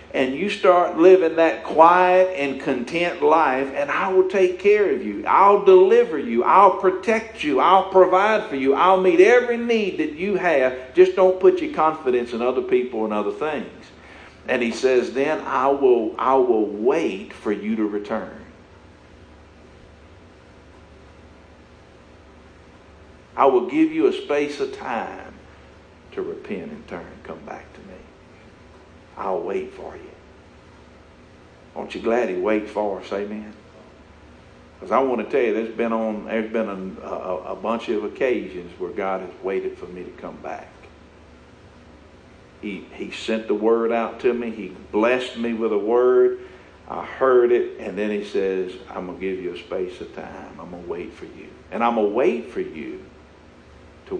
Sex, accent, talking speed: male, American, 165 wpm